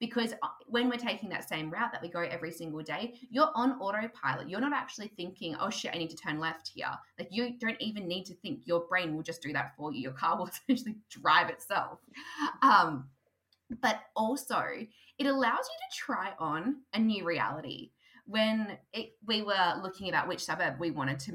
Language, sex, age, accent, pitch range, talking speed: English, female, 20-39, Australian, 170-235 Hz, 200 wpm